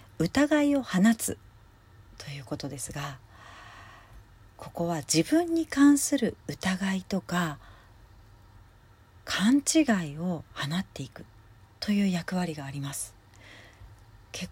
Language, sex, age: Japanese, female, 40-59